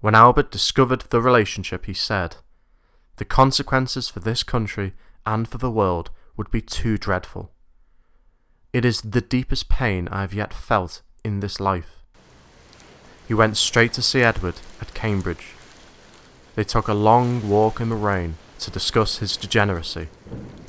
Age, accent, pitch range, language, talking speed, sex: 20-39, British, 90-115 Hz, English, 150 wpm, male